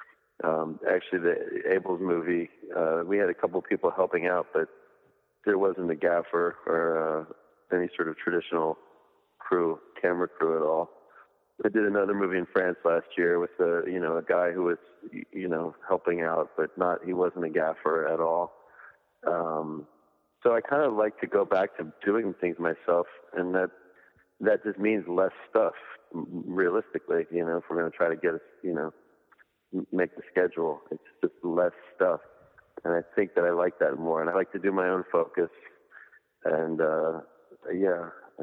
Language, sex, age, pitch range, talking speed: English, male, 30-49, 85-105 Hz, 180 wpm